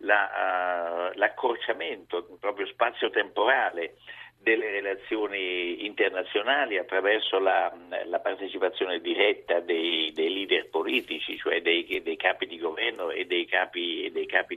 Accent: native